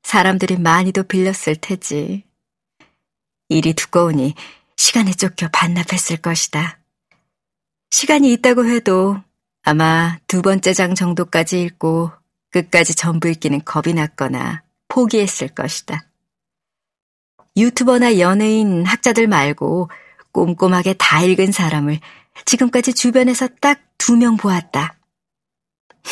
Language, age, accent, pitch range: Korean, 40-59, native, 170-215 Hz